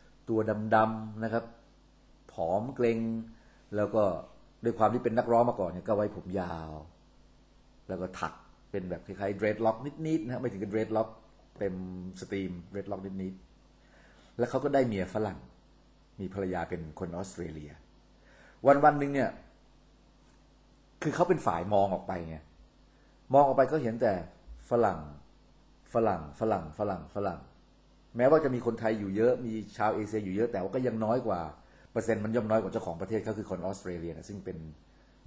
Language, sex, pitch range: Thai, male, 95-125 Hz